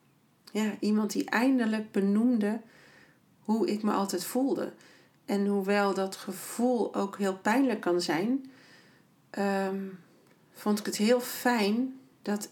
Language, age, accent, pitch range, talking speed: Dutch, 40-59, Dutch, 185-220 Hz, 120 wpm